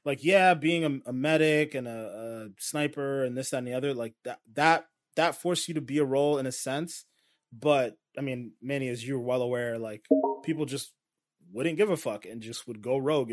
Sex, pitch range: male, 120-145 Hz